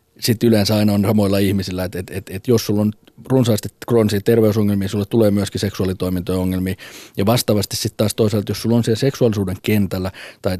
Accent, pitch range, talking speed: native, 95-110 Hz, 185 wpm